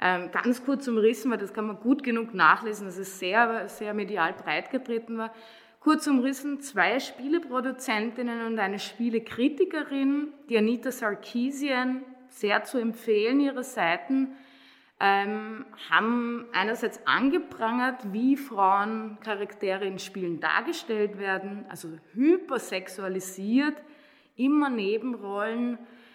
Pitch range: 205-270 Hz